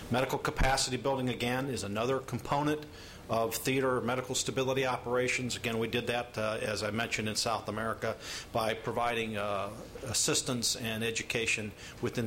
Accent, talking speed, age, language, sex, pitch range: American, 145 wpm, 50-69, English, male, 110-125 Hz